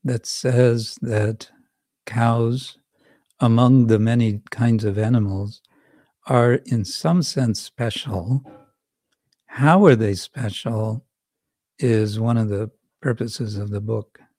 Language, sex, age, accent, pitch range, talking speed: English, male, 60-79, American, 110-135 Hz, 115 wpm